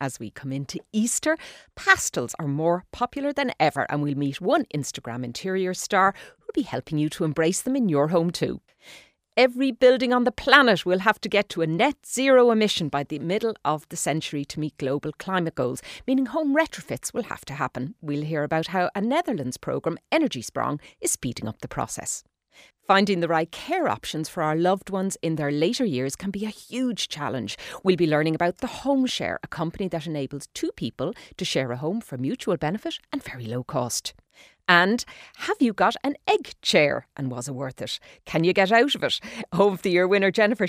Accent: Irish